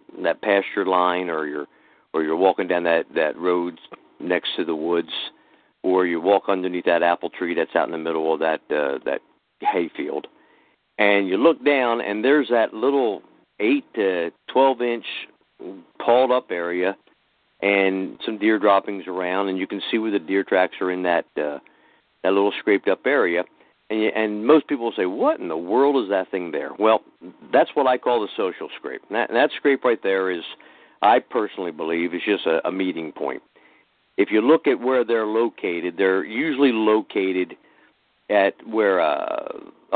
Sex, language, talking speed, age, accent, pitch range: male, English, 180 wpm, 50-69, American, 90-115 Hz